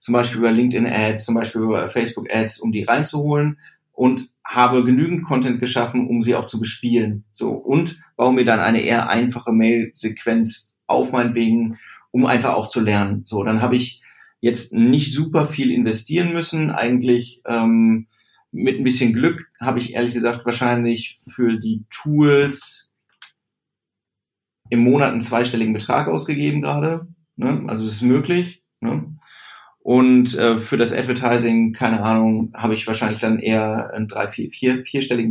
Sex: male